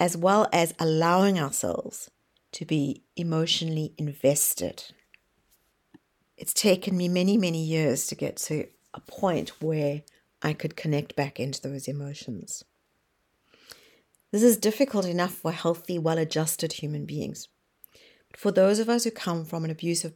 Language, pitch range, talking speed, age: English, 160-190 Hz, 140 wpm, 50-69